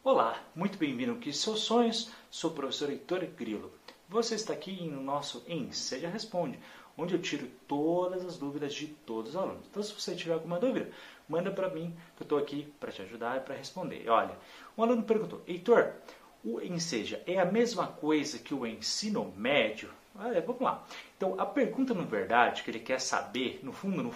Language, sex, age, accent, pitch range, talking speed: Portuguese, male, 30-49, Brazilian, 145-220 Hz, 190 wpm